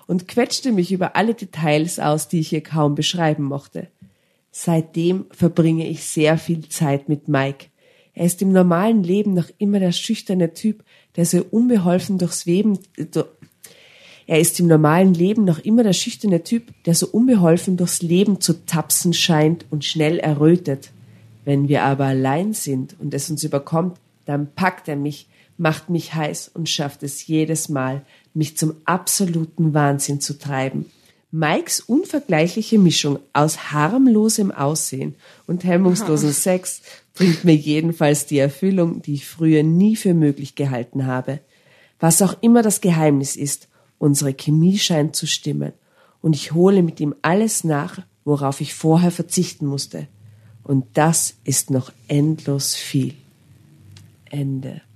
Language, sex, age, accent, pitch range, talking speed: German, female, 40-59, German, 145-180 Hz, 135 wpm